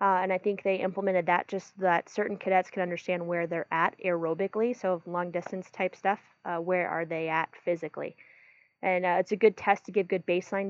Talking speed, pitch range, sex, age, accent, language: 220 wpm, 170-195 Hz, female, 20-39, American, English